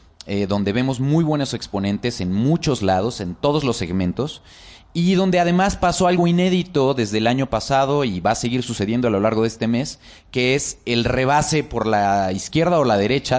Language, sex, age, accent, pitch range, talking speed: Spanish, male, 30-49, Mexican, 100-140 Hz, 195 wpm